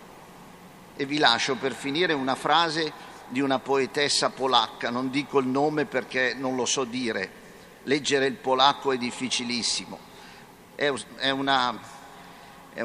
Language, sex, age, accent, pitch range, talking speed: Italian, male, 50-69, native, 125-150 Hz, 120 wpm